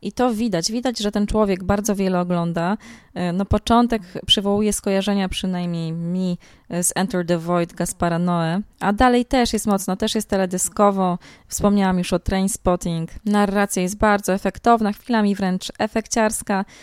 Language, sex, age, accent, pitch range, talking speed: Polish, female, 20-39, native, 180-220 Hz, 145 wpm